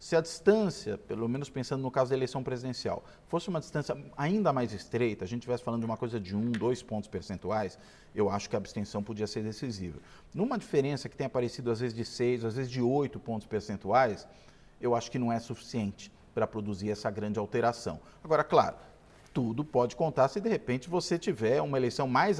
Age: 40-59